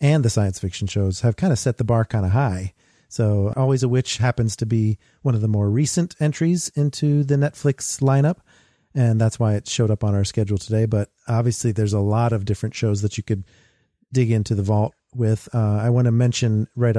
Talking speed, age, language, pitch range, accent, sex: 225 wpm, 40-59, English, 105-135 Hz, American, male